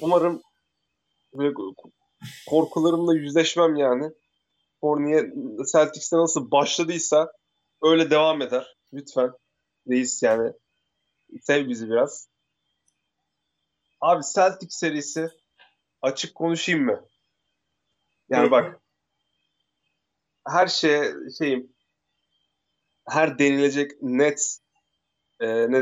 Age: 30-49